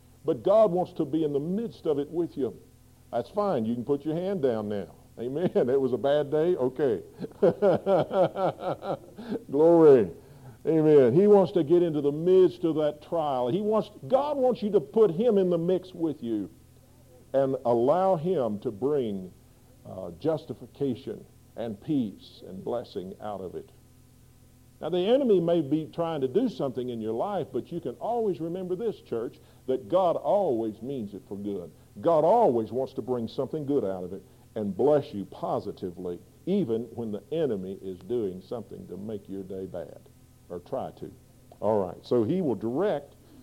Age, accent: 50-69, American